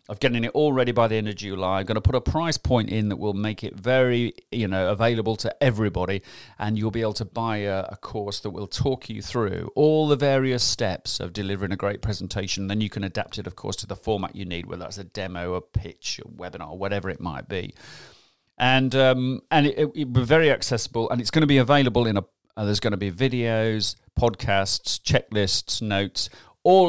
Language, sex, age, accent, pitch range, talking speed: English, male, 40-59, British, 100-140 Hz, 230 wpm